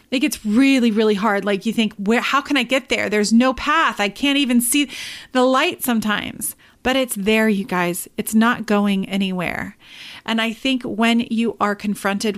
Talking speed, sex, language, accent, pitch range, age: 190 wpm, female, English, American, 200-245 Hz, 30-49